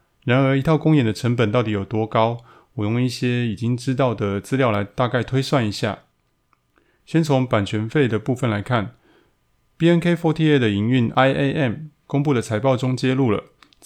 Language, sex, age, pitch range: Chinese, male, 20-39, 110-140 Hz